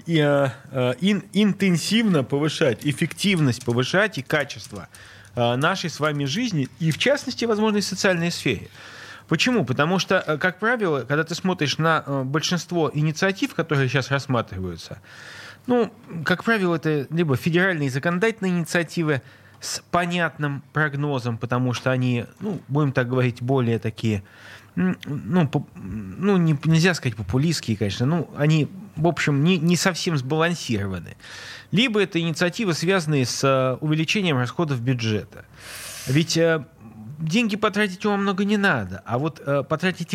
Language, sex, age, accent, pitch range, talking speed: Russian, male, 30-49, native, 130-180 Hz, 125 wpm